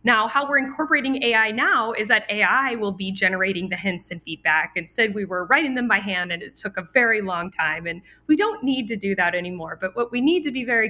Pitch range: 180-230 Hz